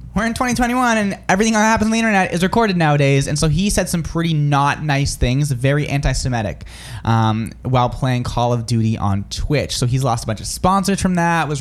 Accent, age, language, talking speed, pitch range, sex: American, 20-39, English, 210 wpm, 130-185 Hz, male